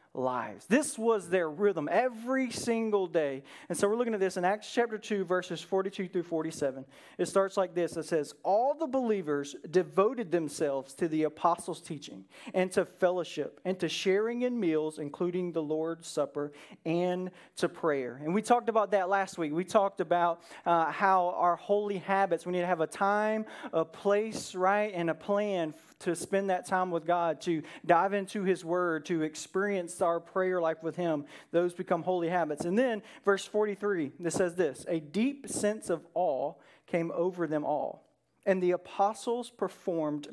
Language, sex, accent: English, male, American